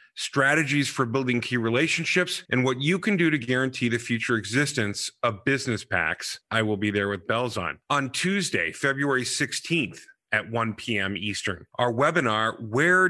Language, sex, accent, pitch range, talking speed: English, male, American, 115-160 Hz, 165 wpm